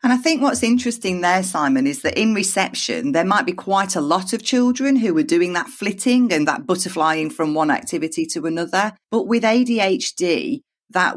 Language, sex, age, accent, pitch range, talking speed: English, female, 40-59, British, 150-225 Hz, 195 wpm